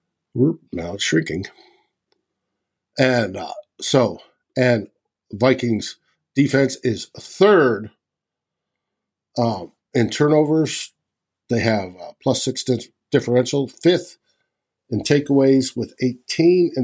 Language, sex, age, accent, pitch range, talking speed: English, male, 50-69, American, 120-165 Hz, 95 wpm